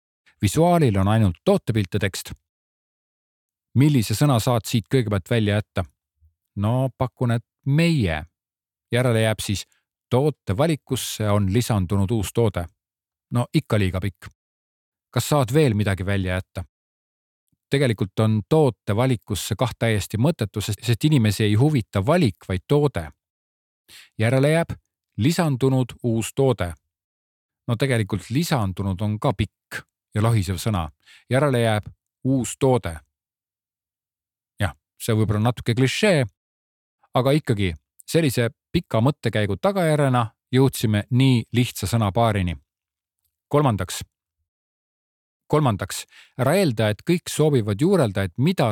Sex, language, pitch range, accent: male, Czech, 95-130 Hz, Finnish